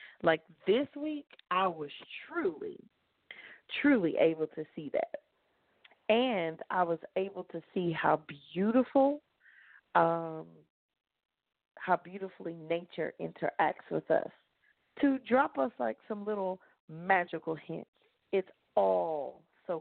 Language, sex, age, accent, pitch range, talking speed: English, female, 30-49, American, 160-220 Hz, 110 wpm